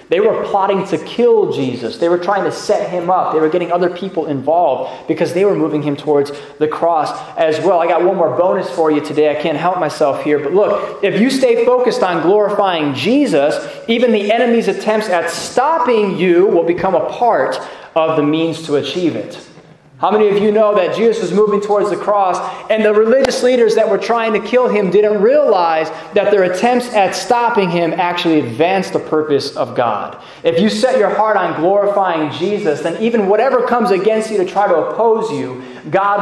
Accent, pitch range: American, 160-215 Hz